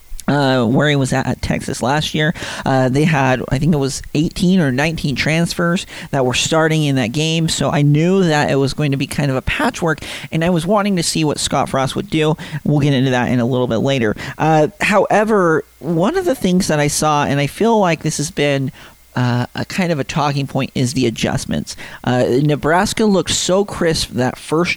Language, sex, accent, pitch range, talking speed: English, male, American, 130-165 Hz, 225 wpm